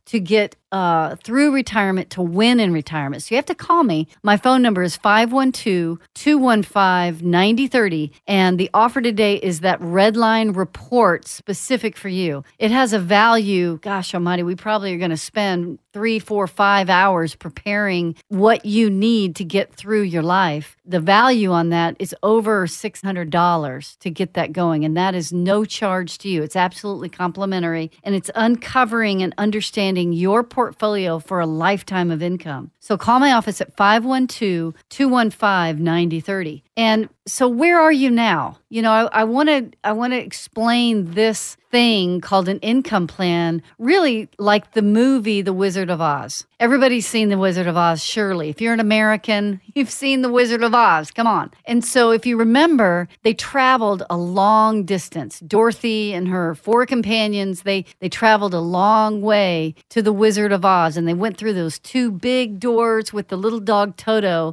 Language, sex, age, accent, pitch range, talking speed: English, female, 40-59, American, 180-225 Hz, 170 wpm